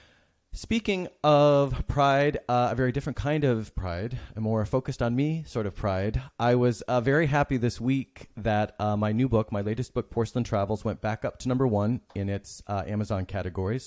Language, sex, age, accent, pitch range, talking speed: English, male, 30-49, American, 100-125 Hz, 200 wpm